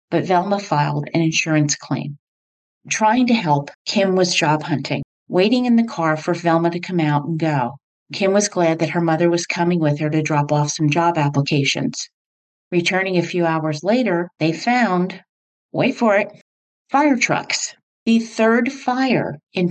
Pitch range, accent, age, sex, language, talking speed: 150-190 Hz, American, 40-59, female, English, 170 wpm